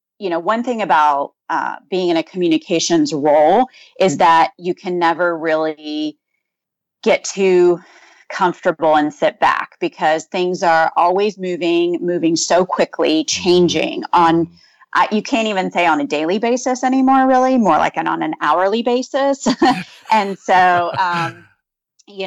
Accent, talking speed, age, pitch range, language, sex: American, 150 wpm, 30-49, 160-190 Hz, English, female